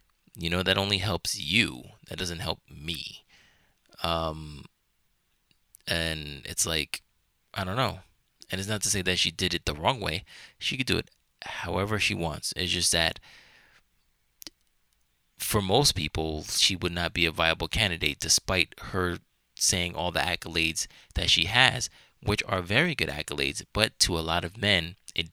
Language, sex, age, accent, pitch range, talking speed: English, male, 20-39, American, 80-100 Hz, 165 wpm